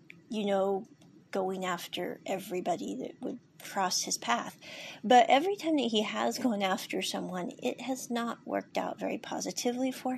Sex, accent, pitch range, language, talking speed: female, American, 195-265 Hz, English, 160 wpm